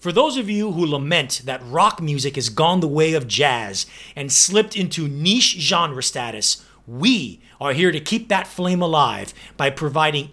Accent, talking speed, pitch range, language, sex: American, 180 wpm, 140-185 Hz, English, male